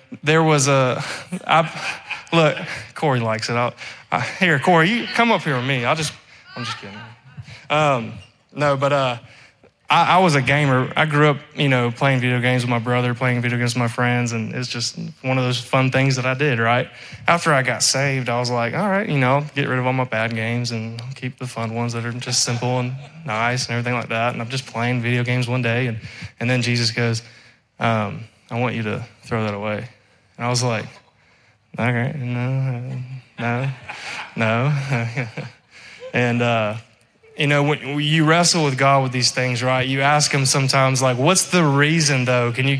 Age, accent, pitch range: 20-39, American, 120-150 Hz